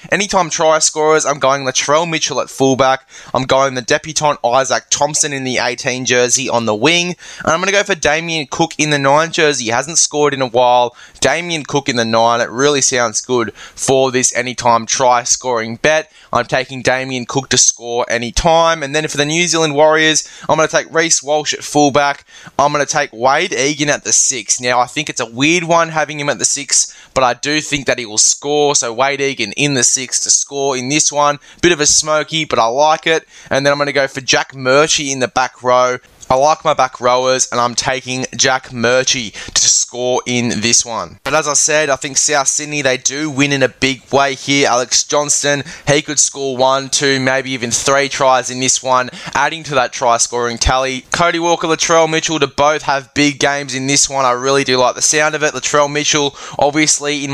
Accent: Australian